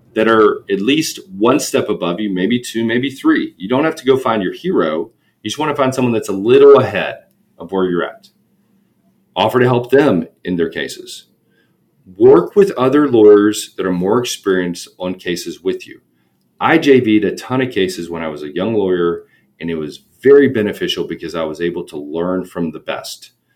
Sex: male